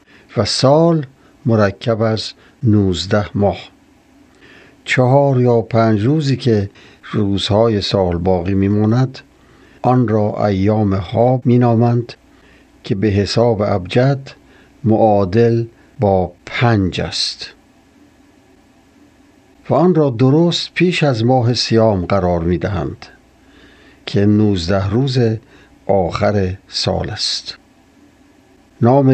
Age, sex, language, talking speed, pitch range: 60-79, male, Persian, 95 wpm, 100-125 Hz